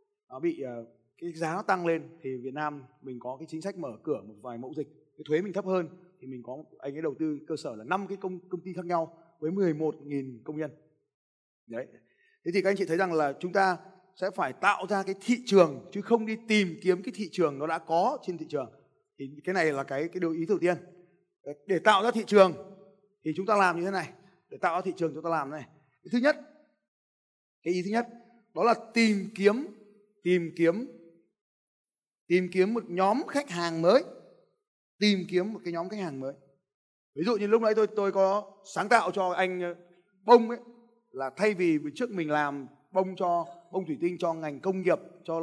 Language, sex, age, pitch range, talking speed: Vietnamese, male, 20-39, 160-205 Hz, 220 wpm